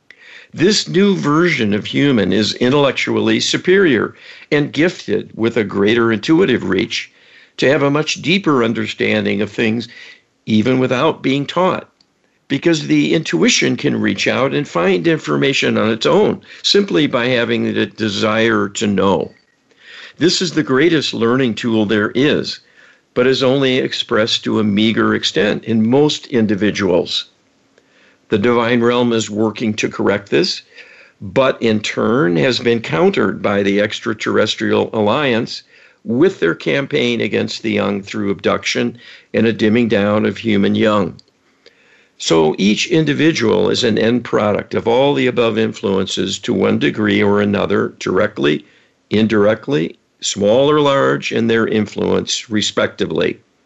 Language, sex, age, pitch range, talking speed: English, male, 60-79, 105-145 Hz, 140 wpm